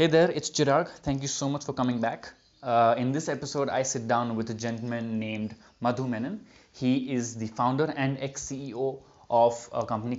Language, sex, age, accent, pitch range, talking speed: English, male, 20-39, Indian, 110-130 Hz, 195 wpm